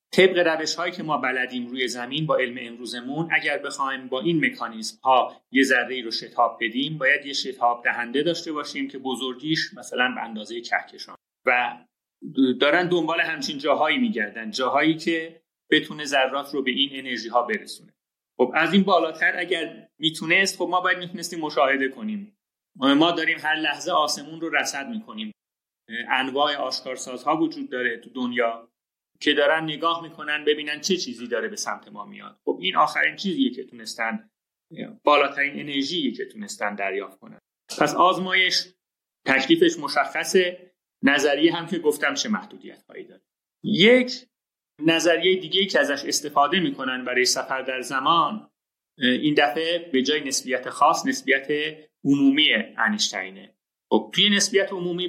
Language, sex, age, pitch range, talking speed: Persian, male, 30-49, 130-180 Hz, 145 wpm